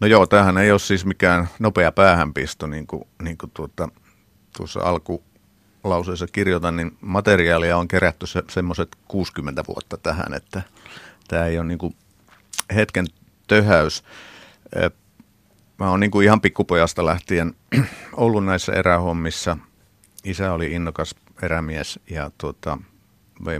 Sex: male